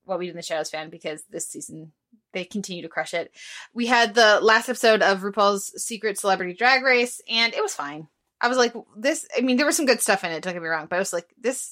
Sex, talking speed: female, 265 wpm